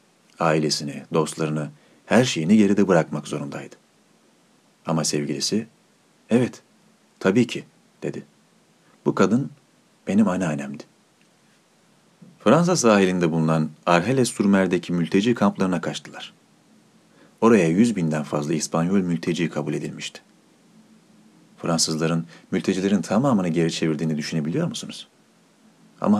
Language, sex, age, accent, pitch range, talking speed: Turkish, male, 40-59, native, 80-105 Hz, 90 wpm